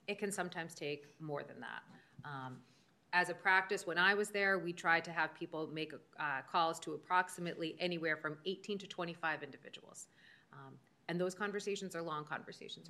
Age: 30-49